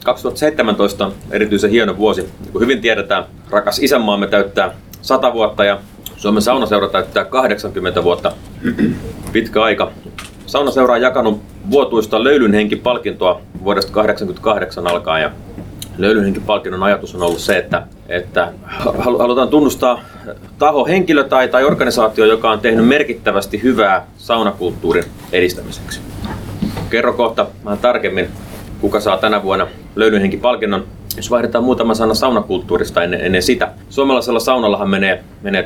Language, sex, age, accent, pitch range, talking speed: Finnish, male, 30-49, native, 95-115 Hz, 120 wpm